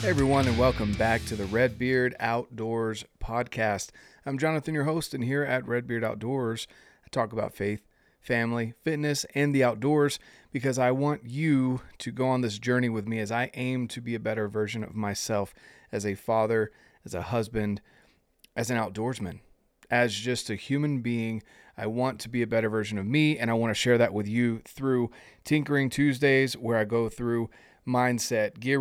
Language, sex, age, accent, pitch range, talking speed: English, male, 30-49, American, 110-125 Hz, 185 wpm